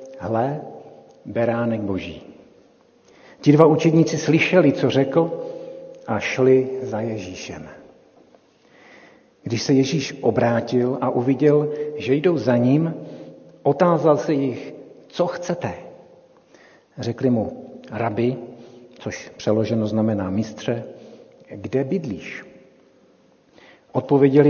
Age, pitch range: 60-79, 125-150 Hz